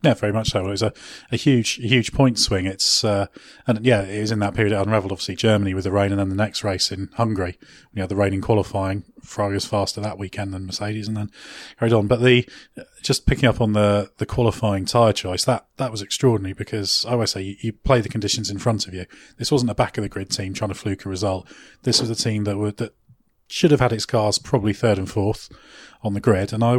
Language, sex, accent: English, male, British